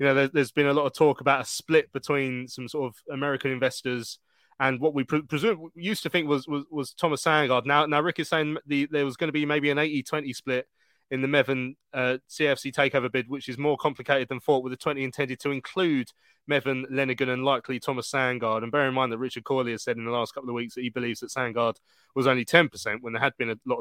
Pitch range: 125-145 Hz